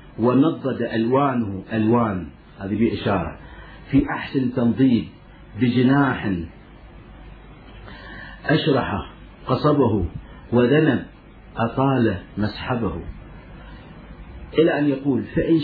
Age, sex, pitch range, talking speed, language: 50-69, male, 110-145 Hz, 70 wpm, Arabic